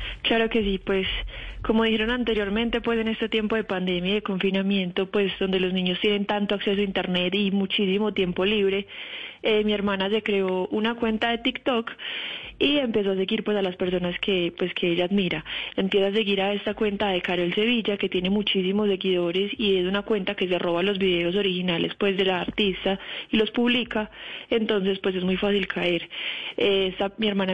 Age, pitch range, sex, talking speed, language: 20-39, 190-220 Hz, female, 200 wpm, Spanish